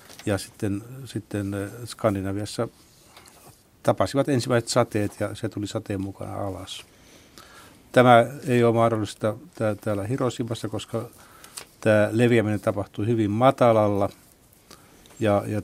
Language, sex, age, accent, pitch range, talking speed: Finnish, male, 60-79, native, 100-115 Hz, 105 wpm